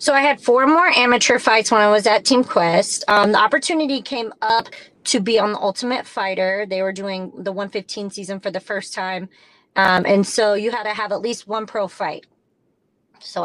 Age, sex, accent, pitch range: 30-49, female, American, 185-220 Hz